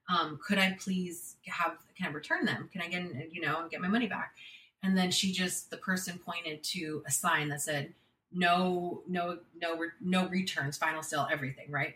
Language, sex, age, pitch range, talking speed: English, female, 30-49, 155-210 Hz, 200 wpm